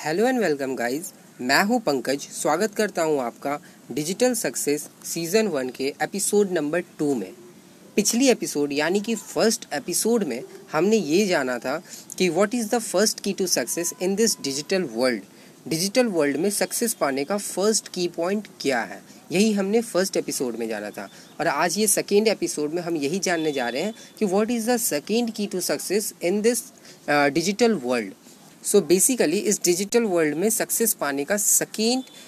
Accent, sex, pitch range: native, female, 155-220 Hz